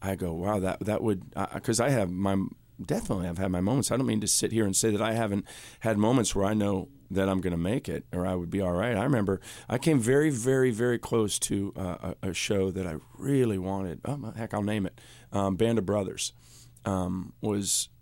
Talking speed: 235 wpm